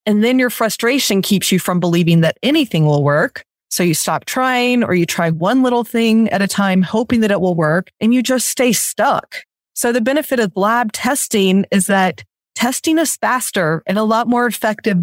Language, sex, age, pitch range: English, female, 30-49, 185-245 Hz